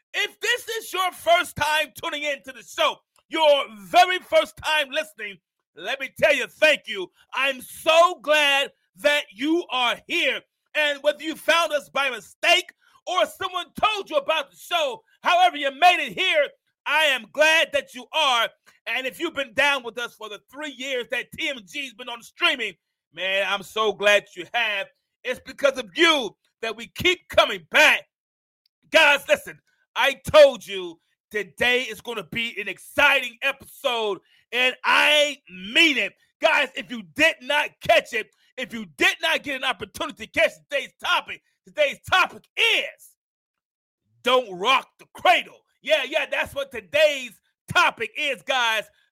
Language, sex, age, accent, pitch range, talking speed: English, male, 30-49, American, 235-320 Hz, 165 wpm